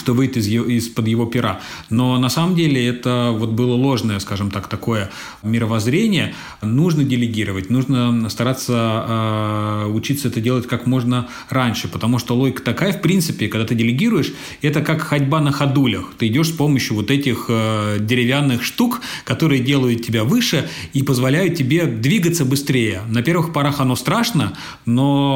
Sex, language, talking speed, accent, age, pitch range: male, Russian, 160 wpm, native, 30-49, 115-140 Hz